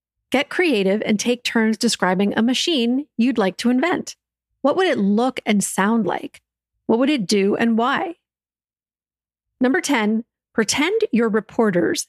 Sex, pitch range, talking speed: female, 200-260 Hz, 150 wpm